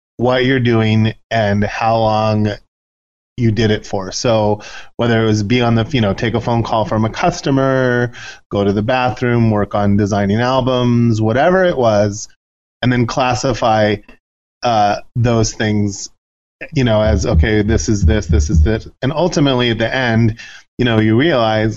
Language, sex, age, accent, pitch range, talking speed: English, male, 30-49, American, 100-120 Hz, 170 wpm